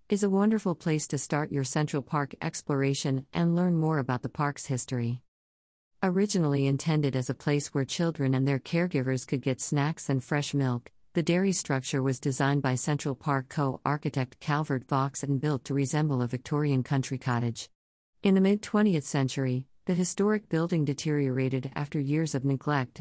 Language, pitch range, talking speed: English, 130-170 Hz, 170 wpm